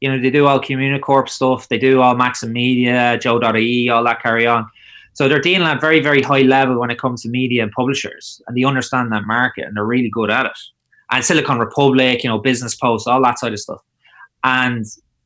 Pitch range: 110-130 Hz